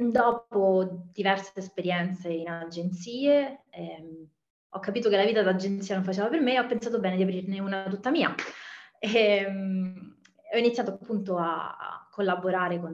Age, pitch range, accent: 20-39, 180-220 Hz, native